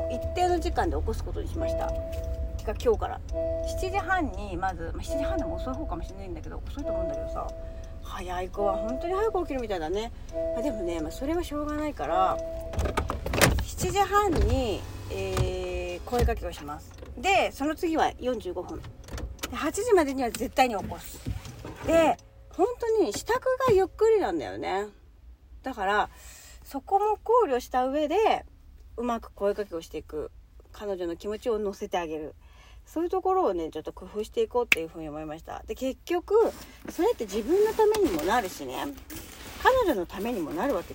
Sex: female